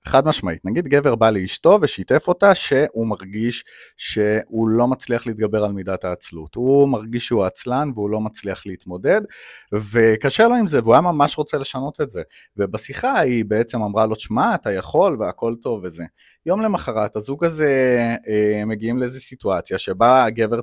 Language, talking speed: Hebrew, 165 wpm